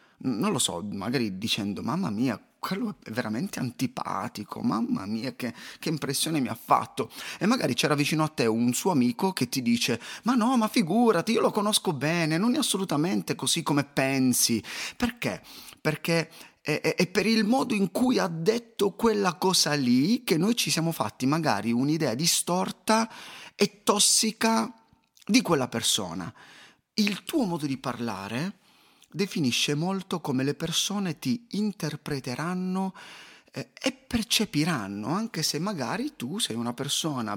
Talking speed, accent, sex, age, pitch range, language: 155 wpm, native, male, 30-49, 135-220 Hz, Italian